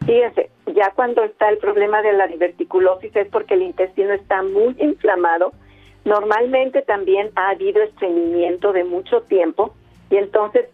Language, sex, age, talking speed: Spanish, female, 50-69, 145 wpm